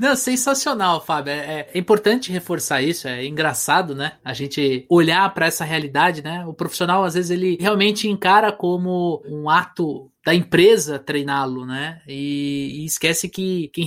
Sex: male